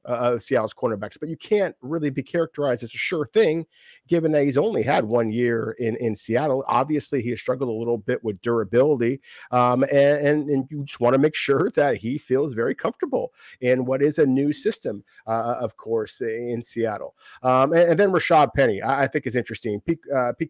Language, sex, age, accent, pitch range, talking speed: English, male, 50-69, American, 120-145 Hz, 200 wpm